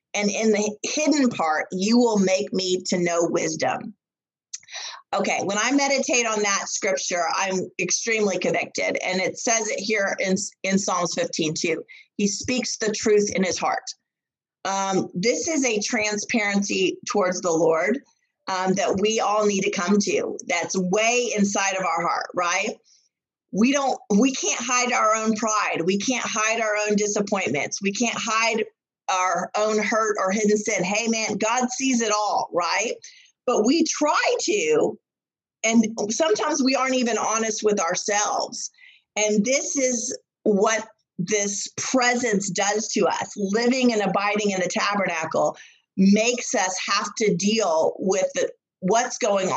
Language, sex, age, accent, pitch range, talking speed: English, female, 30-49, American, 195-245 Hz, 155 wpm